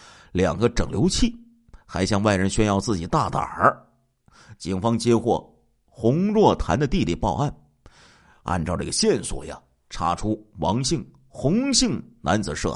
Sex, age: male, 50-69